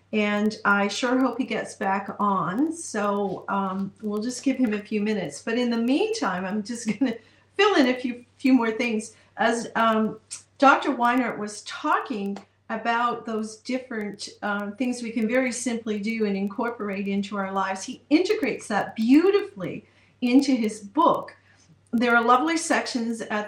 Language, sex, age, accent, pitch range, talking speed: English, female, 40-59, American, 200-235 Hz, 165 wpm